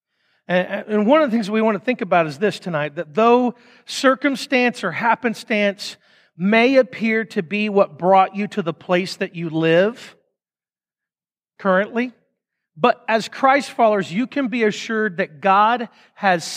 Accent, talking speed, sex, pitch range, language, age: American, 155 wpm, male, 180-225 Hz, English, 40-59